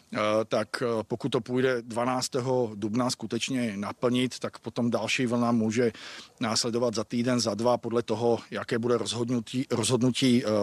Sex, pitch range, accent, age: male, 120-130 Hz, native, 40-59